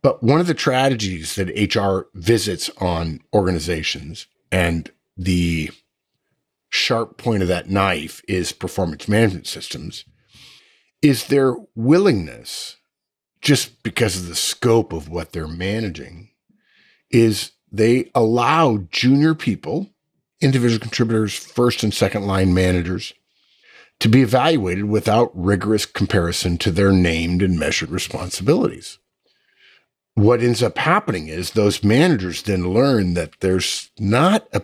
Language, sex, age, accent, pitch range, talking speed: English, male, 50-69, American, 90-120 Hz, 120 wpm